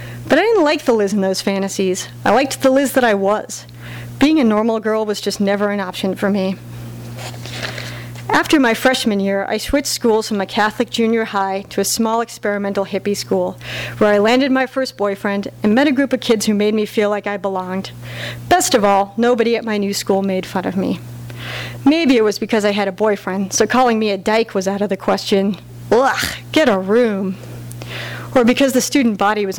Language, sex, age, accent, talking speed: English, female, 40-59, American, 210 wpm